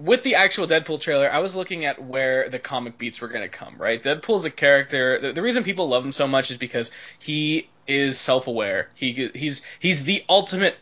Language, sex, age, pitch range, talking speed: English, male, 20-39, 135-170 Hz, 215 wpm